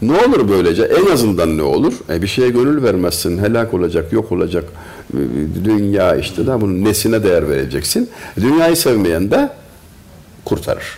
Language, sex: Turkish, male